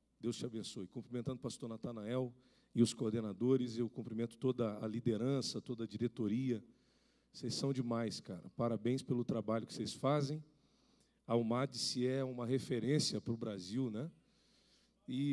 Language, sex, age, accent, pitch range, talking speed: Portuguese, male, 40-59, Brazilian, 115-145 Hz, 150 wpm